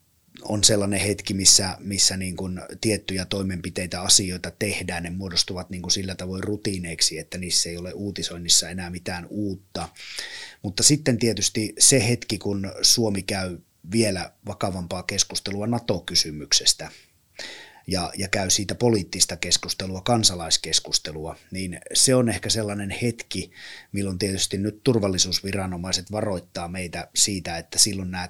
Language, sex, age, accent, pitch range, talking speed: Finnish, male, 30-49, native, 90-105 Hz, 120 wpm